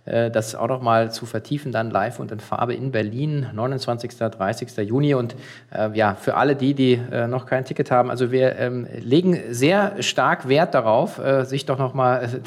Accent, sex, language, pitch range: German, male, German, 120-145 Hz